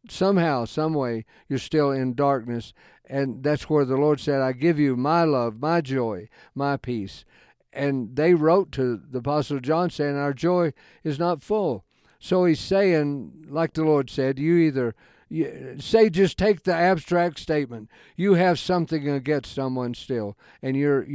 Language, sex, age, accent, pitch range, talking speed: English, male, 50-69, American, 130-160 Hz, 165 wpm